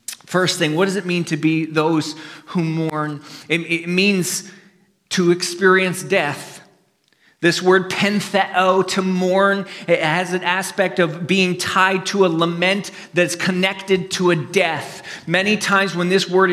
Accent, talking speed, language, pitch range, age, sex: American, 155 wpm, English, 160-195 Hz, 40-59, male